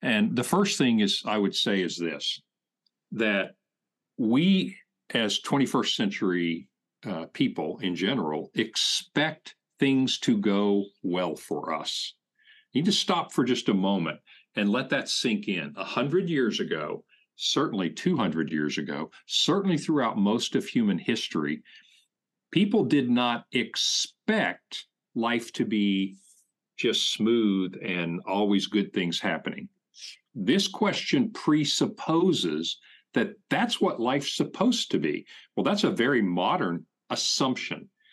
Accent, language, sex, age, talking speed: American, English, male, 50-69, 130 wpm